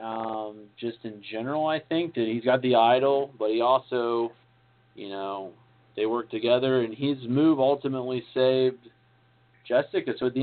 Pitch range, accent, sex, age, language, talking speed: 115-155 Hz, American, male, 40-59, English, 160 wpm